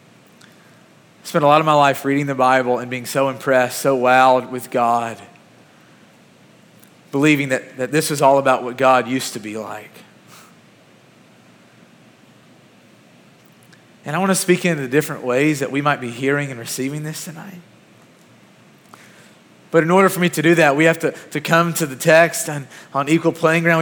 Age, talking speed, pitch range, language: 30-49, 175 wpm, 135-195 Hz, English